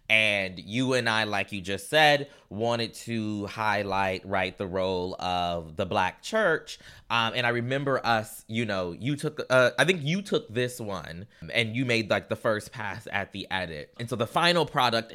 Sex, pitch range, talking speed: male, 100-130 Hz, 195 wpm